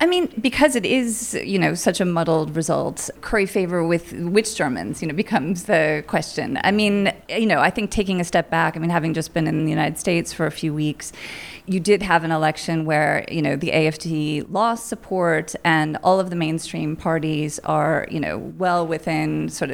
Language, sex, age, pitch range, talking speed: English, female, 30-49, 160-190 Hz, 205 wpm